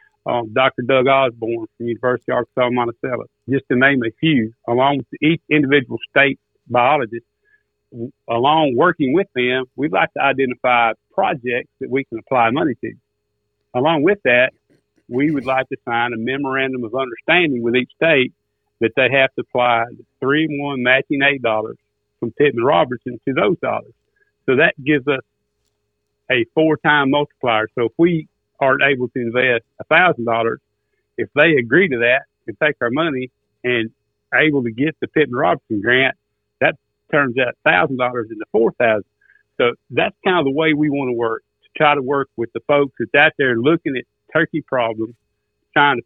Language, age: English, 50-69